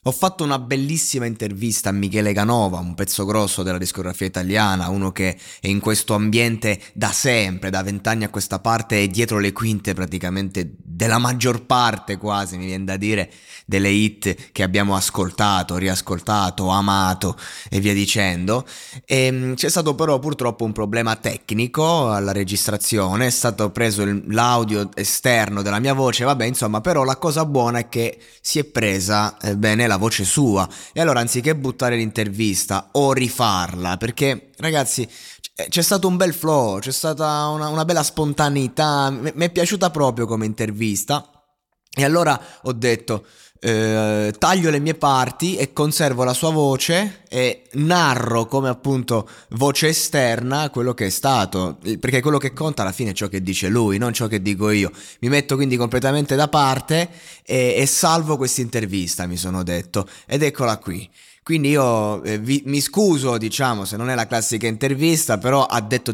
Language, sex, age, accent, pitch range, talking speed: Italian, male, 20-39, native, 100-135 Hz, 165 wpm